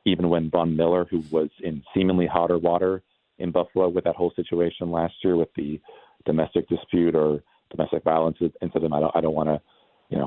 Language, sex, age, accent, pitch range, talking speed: English, male, 40-59, American, 80-90 Hz, 200 wpm